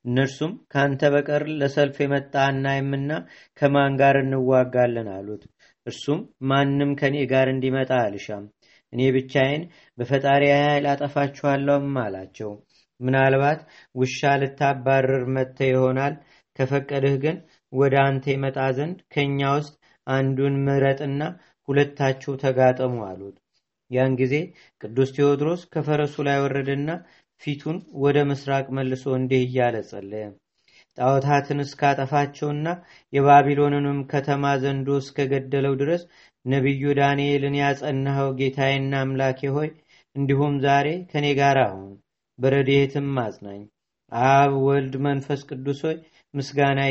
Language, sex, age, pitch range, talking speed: Amharic, male, 40-59, 130-145 Hz, 100 wpm